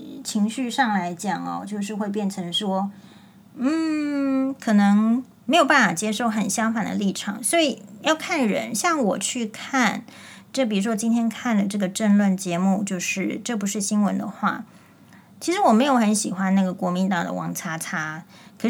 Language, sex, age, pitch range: Chinese, female, 30-49, 195-240 Hz